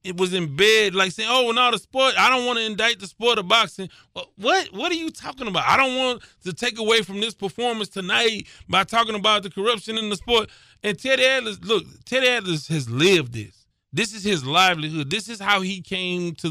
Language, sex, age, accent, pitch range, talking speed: English, male, 30-49, American, 155-205 Hz, 235 wpm